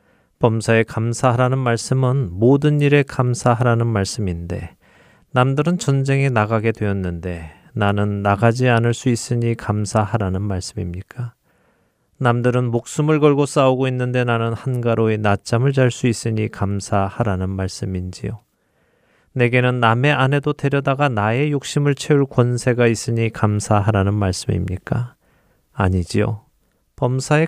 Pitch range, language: 100-130 Hz, Korean